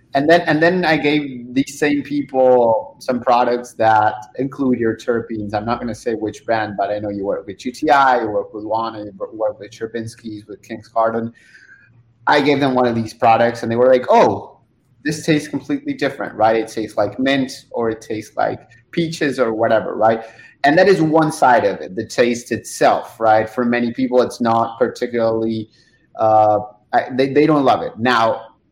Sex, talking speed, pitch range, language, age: male, 190 wpm, 115-140 Hz, English, 30-49